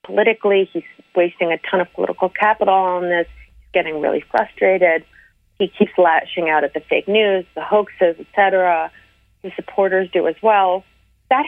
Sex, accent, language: female, American, English